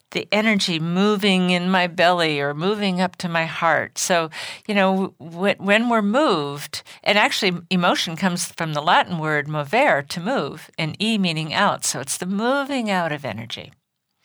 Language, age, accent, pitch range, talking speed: English, 50-69, American, 155-200 Hz, 170 wpm